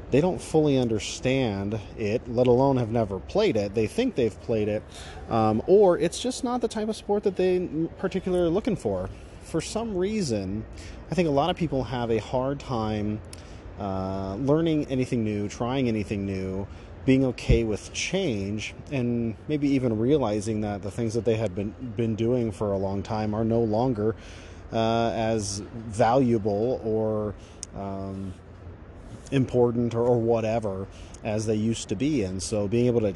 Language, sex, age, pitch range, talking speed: English, male, 30-49, 100-125 Hz, 170 wpm